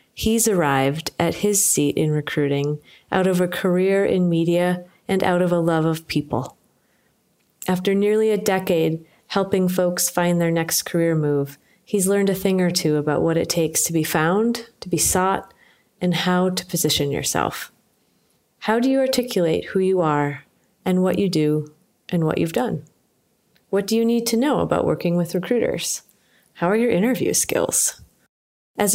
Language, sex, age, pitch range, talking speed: English, female, 30-49, 160-195 Hz, 170 wpm